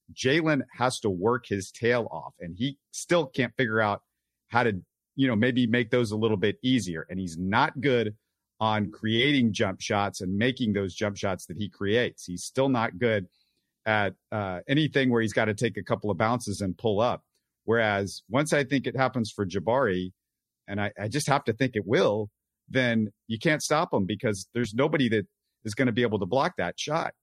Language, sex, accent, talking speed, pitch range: English, male, American, 205 wpm, 100-130 Hz